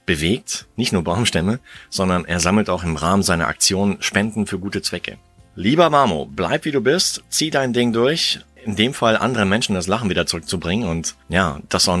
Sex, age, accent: male, 30-49, German